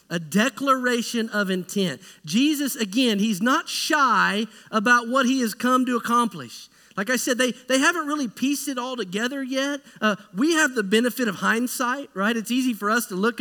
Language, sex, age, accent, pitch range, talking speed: English, male, 40-59, American, 195-250 Hz, 190 wpm